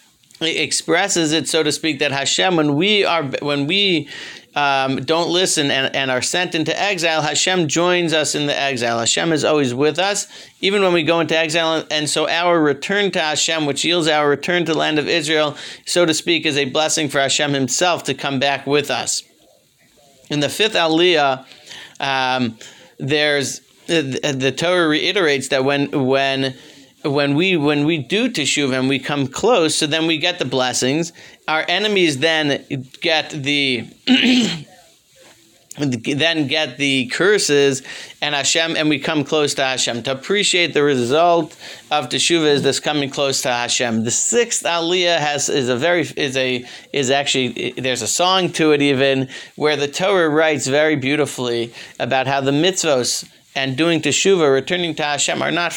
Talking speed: 170 wpm